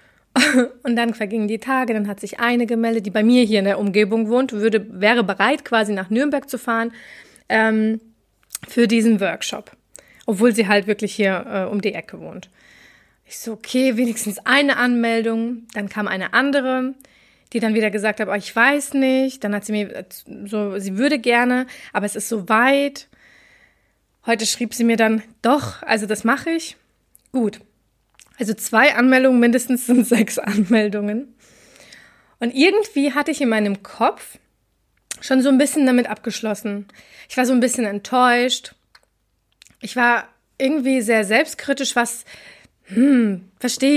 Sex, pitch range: female, 215-260 Hz